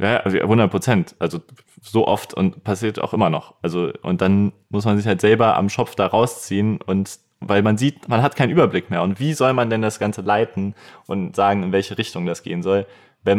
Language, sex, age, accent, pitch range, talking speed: German, male, 20-39, German, 100-120 Hz, 225 wpm